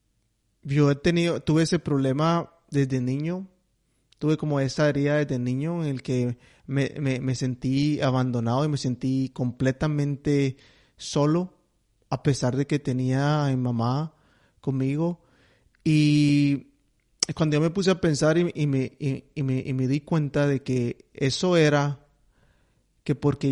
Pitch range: 125-150 Hz